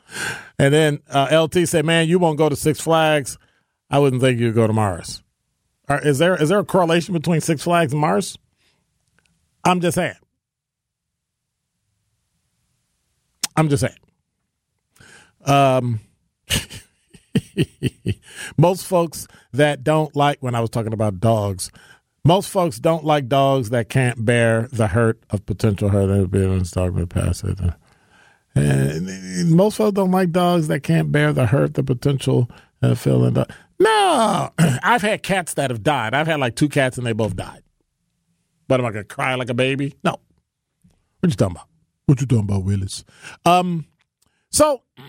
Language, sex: English, male